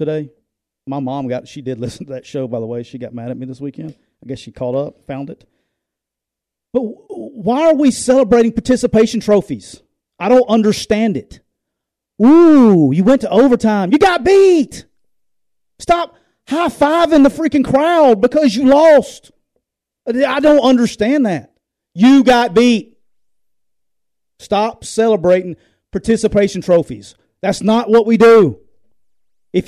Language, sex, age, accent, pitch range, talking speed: English, male, 40-59, American, 170-250 Hz, 145 wpm